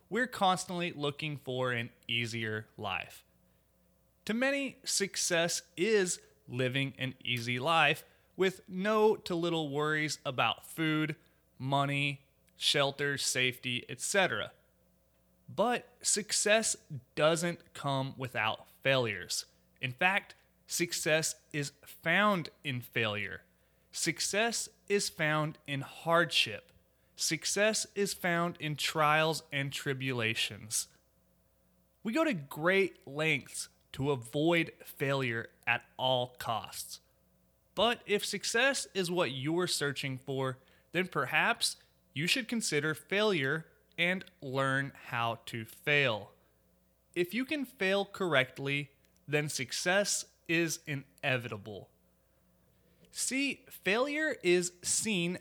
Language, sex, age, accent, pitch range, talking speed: English, male, 30-49, American, 130-180 Hz, 100 wpm